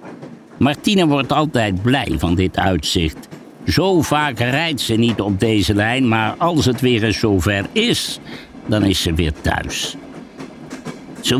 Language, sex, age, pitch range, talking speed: Dutch, male, 60-79, 95-135 Hz, 145 wpm